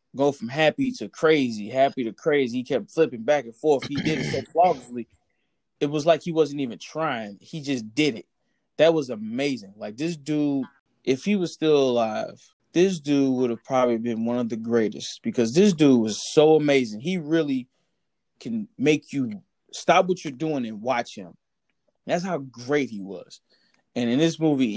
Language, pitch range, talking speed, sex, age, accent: English, 130-205 Hz, 190 wpm, male, 20-39, American